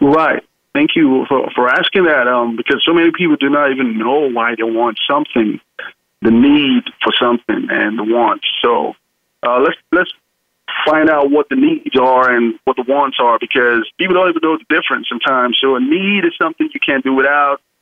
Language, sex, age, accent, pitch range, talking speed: English, male, 30-49, American, 125-190 Hz, 200 wpm